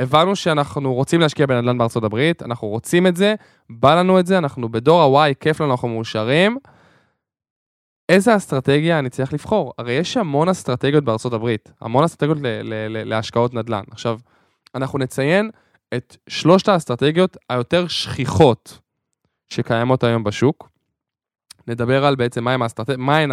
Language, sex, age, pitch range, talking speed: Hebrew, male, 10-29, 115-155 Hz, 140 wpm